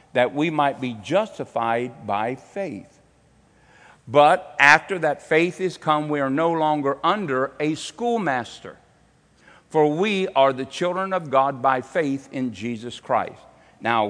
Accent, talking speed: American, 140 wpm